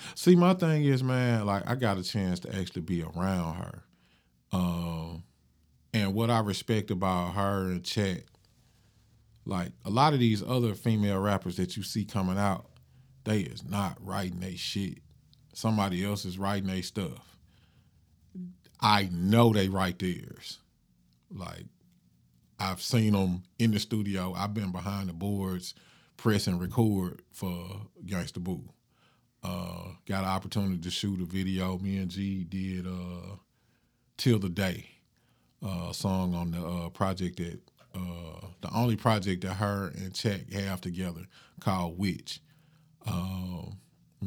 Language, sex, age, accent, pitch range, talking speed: English, male, 40-59, American, 90-105 Hz, 145 wpm